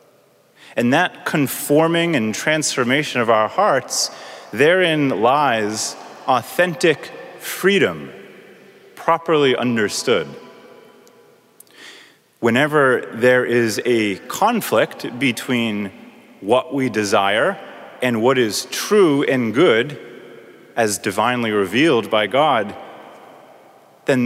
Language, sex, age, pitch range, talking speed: English, male, 30-49, 110-145 Hz, 85 wpm